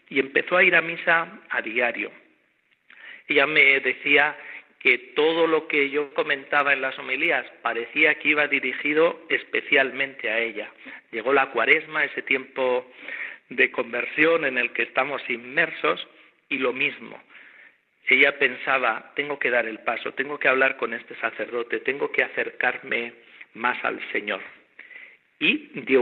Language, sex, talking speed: Spanish, male, 145 wpm